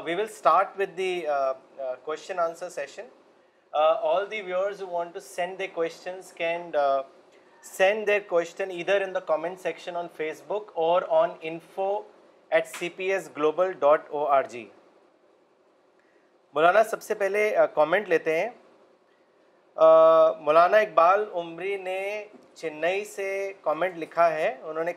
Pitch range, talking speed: 165-200 Hz, 100 wpm